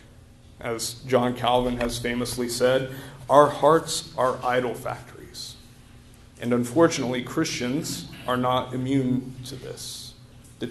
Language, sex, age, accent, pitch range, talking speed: English, male, 40-59, American, 120-130 Hz, 110 wpm